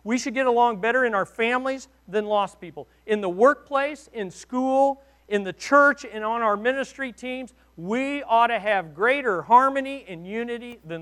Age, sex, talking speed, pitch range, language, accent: 50-69, male, 180 wpm, 160-245 Hz, English, American